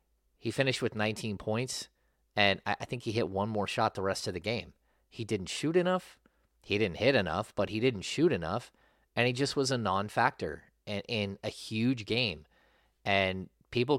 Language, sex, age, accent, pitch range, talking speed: English, male, 30-49, American, 95-110 Hz, 190 wpm